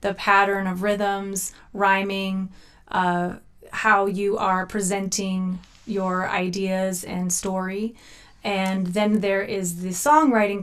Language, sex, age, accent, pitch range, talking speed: English, female, 20-39, American, 190-215 Hz, 115 wpm